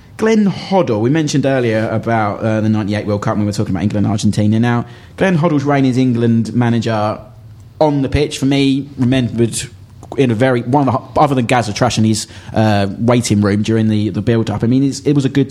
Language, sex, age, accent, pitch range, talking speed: English, male, 20-39, British, 105-125 Hz, 225 wpm